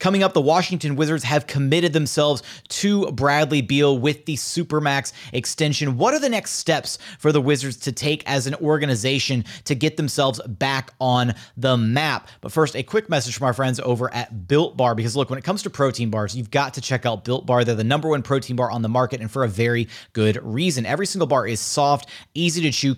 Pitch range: 120-150 Hz